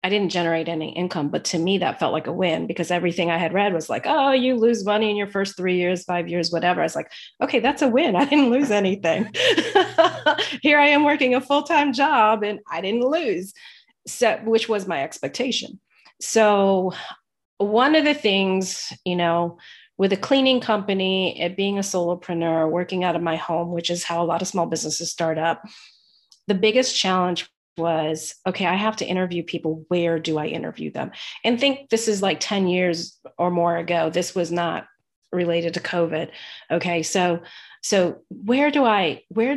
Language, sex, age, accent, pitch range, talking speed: English, female, 30-49, American, 170-220 Hz, 190 wpm